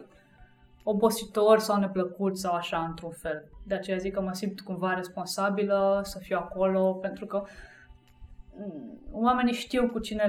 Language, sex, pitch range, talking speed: Romanian, female, 185-220 Hz, 140 wpm